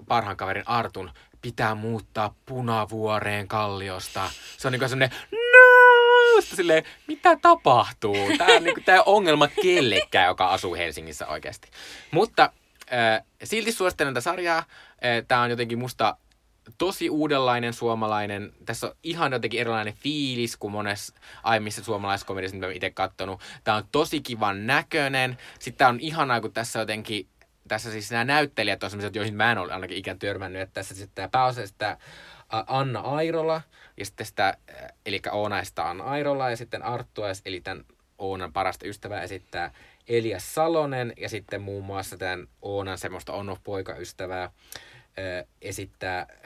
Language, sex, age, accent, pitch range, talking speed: Finnish, male, 20-39, native, 105-145 Hz, 145 wpm